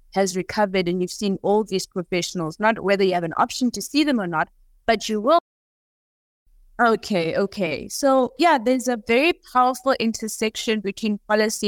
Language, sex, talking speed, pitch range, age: English, female, 170 wpm, 190-220 Hz, 20-39